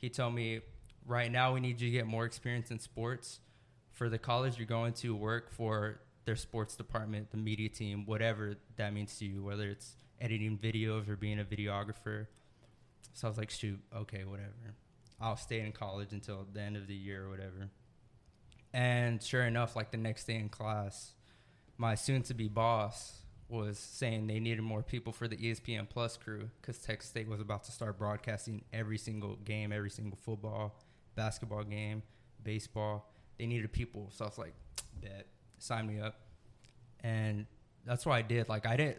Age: 20-39